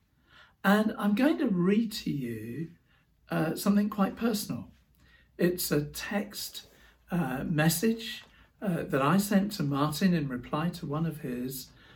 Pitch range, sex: 125-165 Hz, male